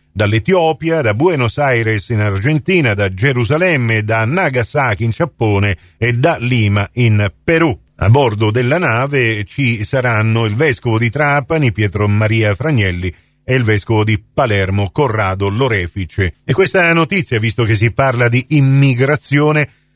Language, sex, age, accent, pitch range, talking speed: Italian, male, 40-59, native, 110-140 Hz, 140 wpm